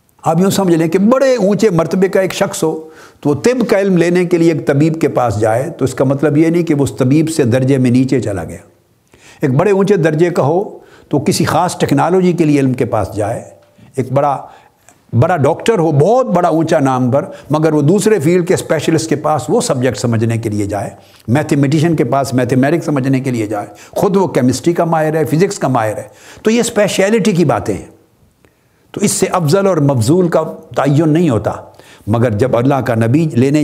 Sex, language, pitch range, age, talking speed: male, Urdu, 120-170 Hz, 60-79, 215 wpm